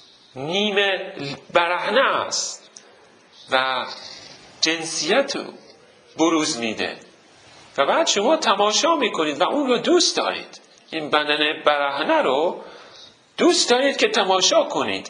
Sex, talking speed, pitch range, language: male, 105 wpm, 155-210 Hz, Persian